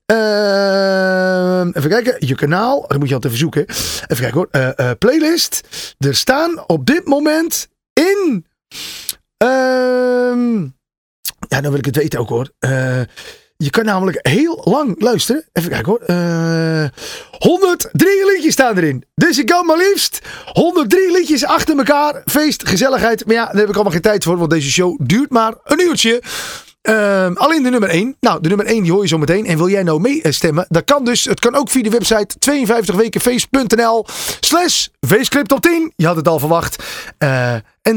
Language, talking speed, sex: Dutch, 180 wpm, male